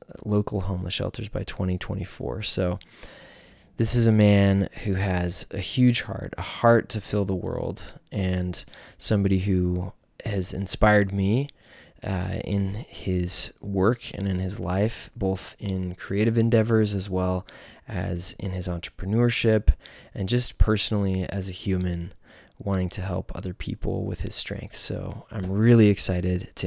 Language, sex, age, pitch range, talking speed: English, male, 20-39, 90-105 Hz, 145 wpm